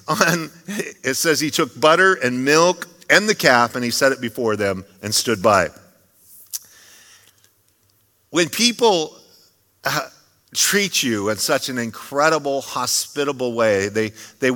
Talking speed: 135 wpm